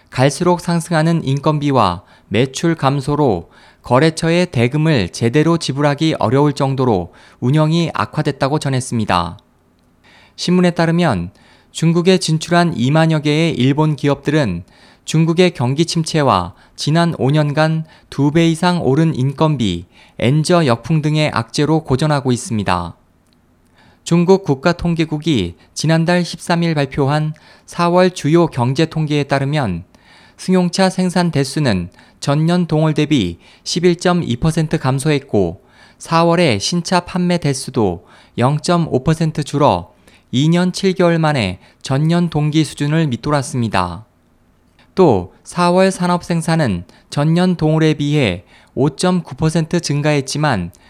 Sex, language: male, Korean